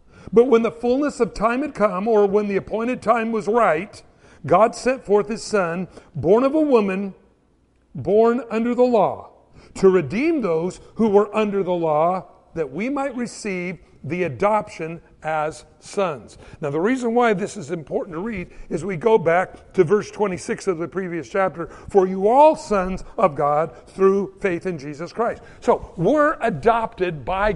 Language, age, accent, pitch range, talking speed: English, 60-79, American, 180-235 Hz, 170 wpm